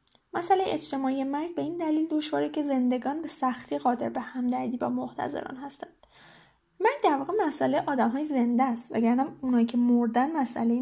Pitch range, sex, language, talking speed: 250-295 Hz, female, Persian, 165 wpm